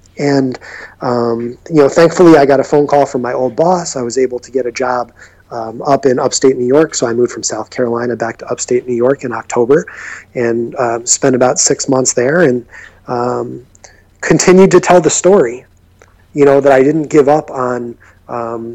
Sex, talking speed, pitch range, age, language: male, 200 wpm, 115-135 Hz, 30-49, English